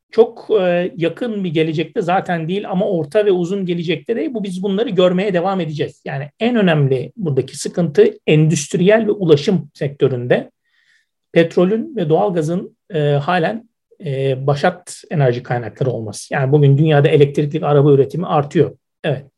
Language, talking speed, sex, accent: Turkish, 140 wpm, male, native